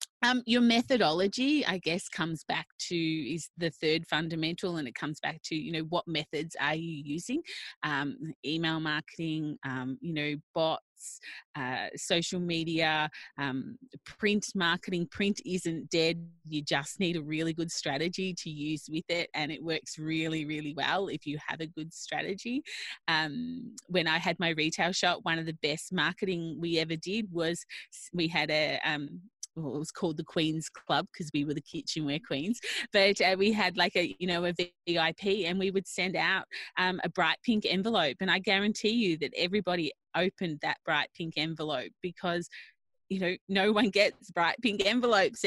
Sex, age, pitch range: female, 20-39, 155-195 Hz